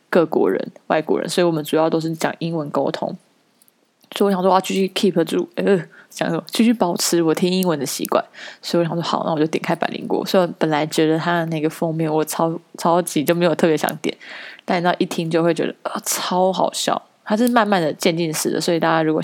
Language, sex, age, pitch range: Chinese, female, 20-39, 160-190 Hz